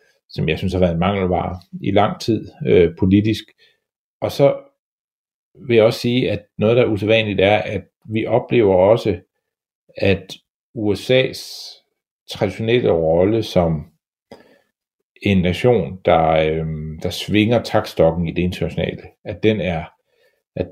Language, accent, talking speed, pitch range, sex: Danish, native, 135 wpm, 90-110 Hz, male